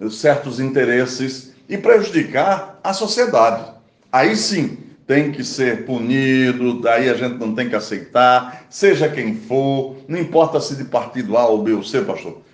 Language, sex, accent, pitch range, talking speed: Portuguese, male, Brazilian, 115-170 Hz, 160 wpm